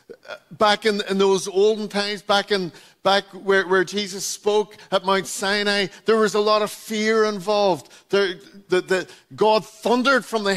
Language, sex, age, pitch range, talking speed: English, male, 50-69, 195-225 Hz, 170 wpm